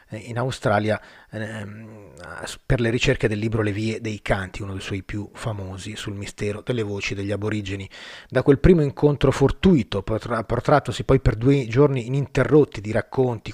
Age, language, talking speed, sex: 30-49, Italian, 160 wpm, male